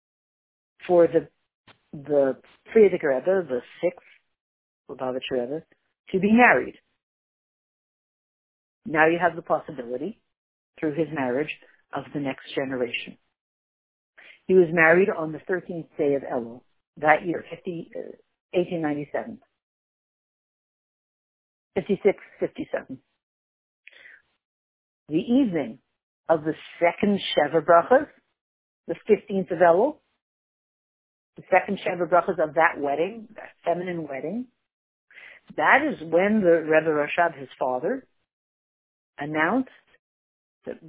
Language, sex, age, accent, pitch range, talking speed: English, female, 60-79, American, 150-195 Hz, 95 wpm